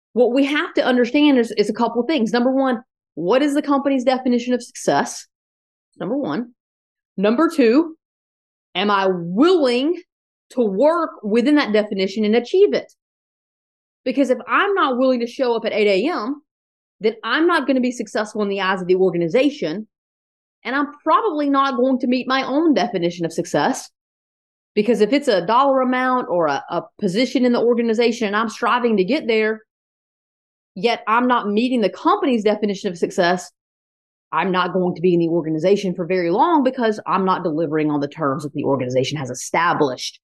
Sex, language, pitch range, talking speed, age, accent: female, English, 190-260 Hz, 180 wpm, 30-49, American